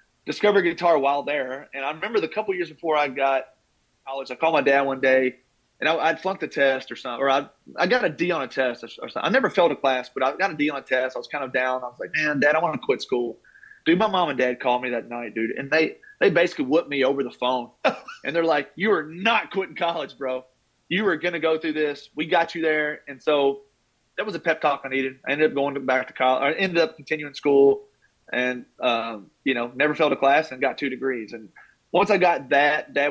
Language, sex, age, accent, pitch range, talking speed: English, male, 30-49, American, 130-155 Hz, 265 wpm